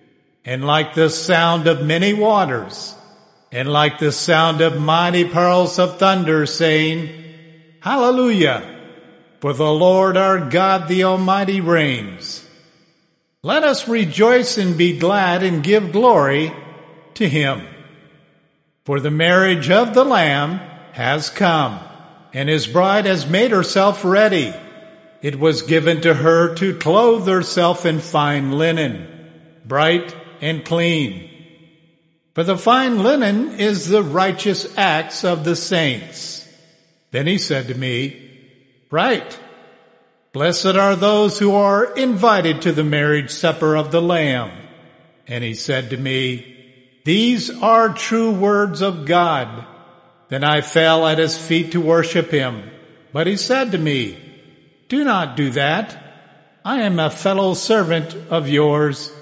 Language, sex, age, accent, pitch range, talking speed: English, male, 50-69, American, 150-190 Hz, 135 wpm